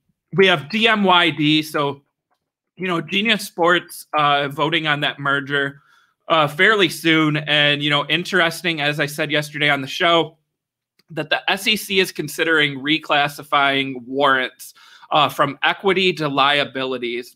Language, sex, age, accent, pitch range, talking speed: English, male, 30-49, American, 135-165 Hz, 135 wpm